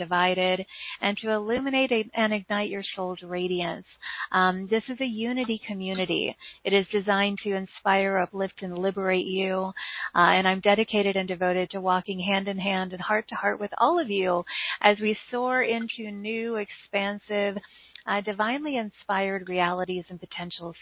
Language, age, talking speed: English, 40-59, 160 wpm